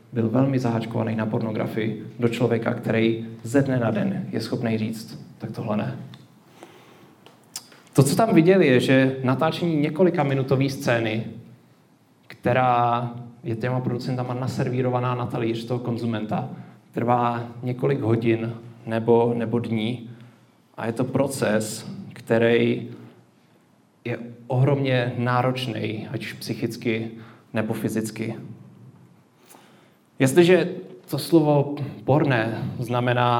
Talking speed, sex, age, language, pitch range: 110 wpm, male, 30-49, Czech, 115-130 Hz